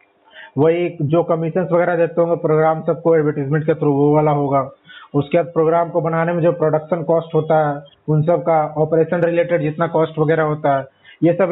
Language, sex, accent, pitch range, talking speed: Hindi, male, native, 150-180 Hz, 190 wpm